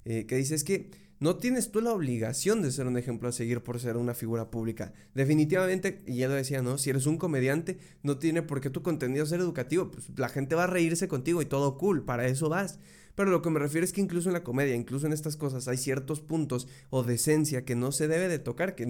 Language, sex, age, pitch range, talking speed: Spanish, male, 20-39, 125-165 Hz, 250 wpm